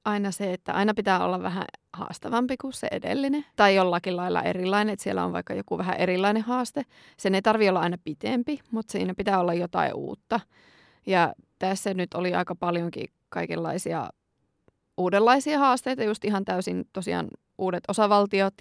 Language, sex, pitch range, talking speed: Finnish, female, 180-215 Hz, 160 wpm